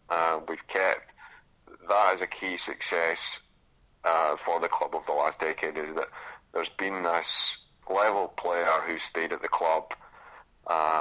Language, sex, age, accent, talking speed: English, male, 30-49, British, 160 wpm